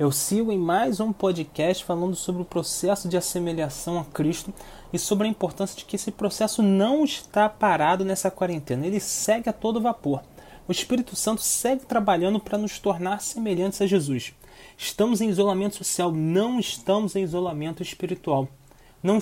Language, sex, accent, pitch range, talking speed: Portuguese, male, Brazilian, 155-200 Hz, 165 wpm